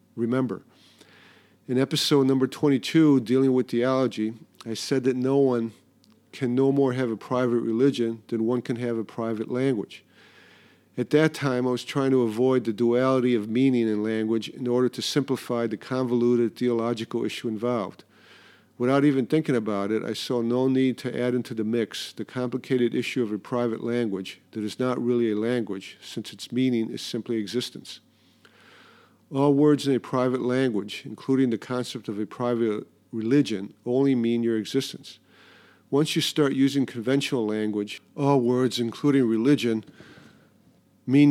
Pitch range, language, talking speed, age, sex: 115-135 Hz, English, 160 wpm, 50-69, male